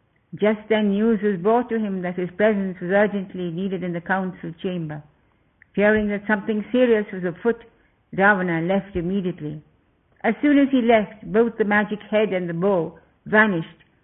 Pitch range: 175-215 Hz